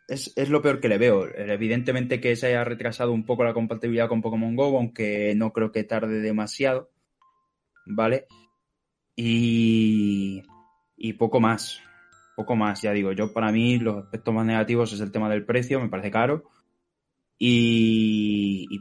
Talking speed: 165 wpm